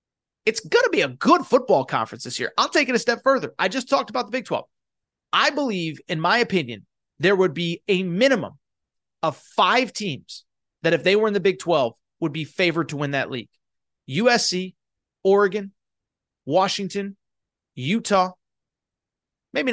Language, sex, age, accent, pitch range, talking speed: English, male, 30-49, American, 155-210 Hz, 170 wpm